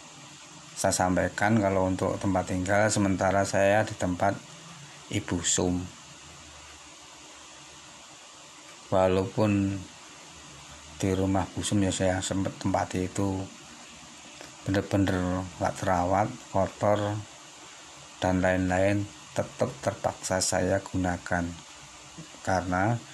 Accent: native